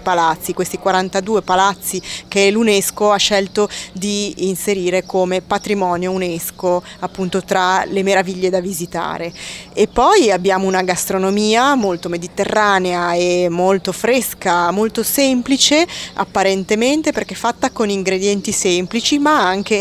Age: 20-39